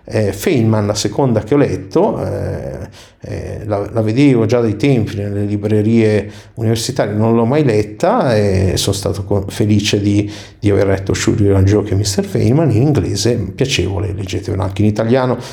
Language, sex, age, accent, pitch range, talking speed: Italian, male, 50-69, native, 100-125 Hz, 170 wpm